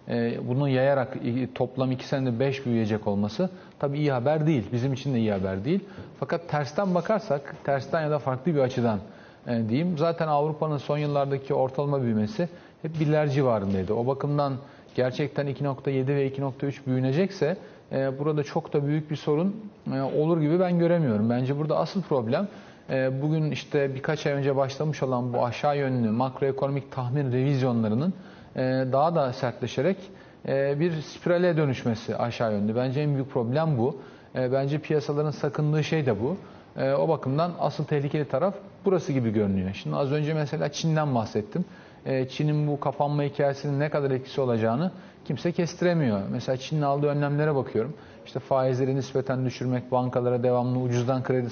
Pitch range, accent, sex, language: 125-155 Hz, native, male, Turkish